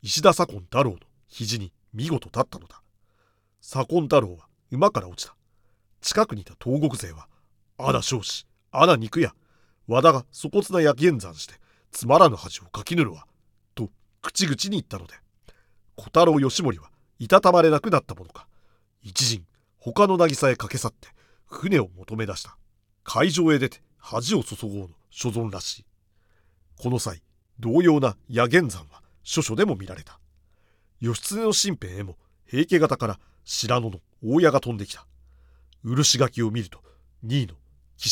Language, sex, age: Japanese, male, 40-59